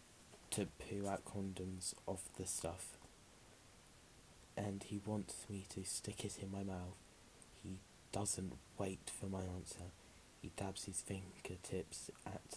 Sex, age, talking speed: male, 20-39, 135 wpm